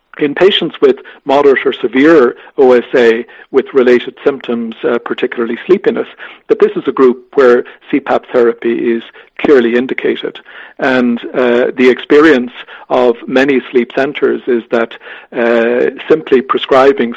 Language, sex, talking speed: English, male, 130 wpm